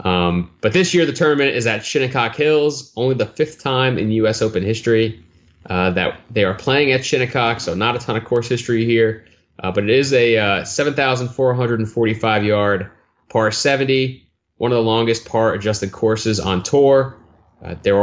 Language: English